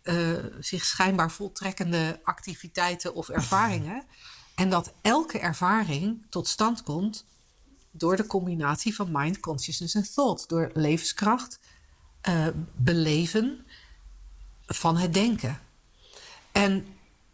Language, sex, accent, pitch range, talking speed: Dutch, female, Dutch, 150-205 Hz, 105 wpm